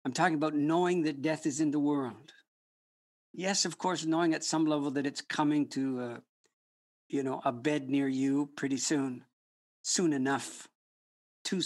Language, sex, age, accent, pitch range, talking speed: English, male, 60-79, American, 130-160 Hz, 170 wpm